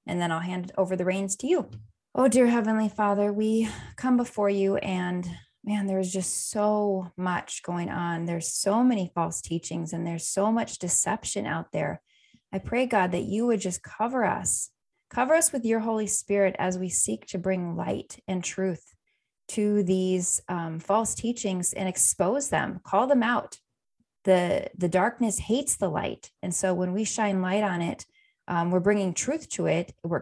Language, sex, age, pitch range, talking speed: English, female, 20-39, 175-210 Hz, 185 wpm